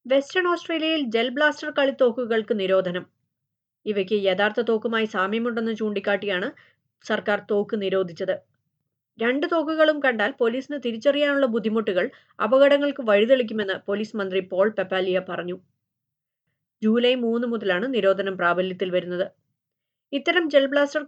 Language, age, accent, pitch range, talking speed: Malayalam, 30-49, native, 190-255 Hz, 95 wpm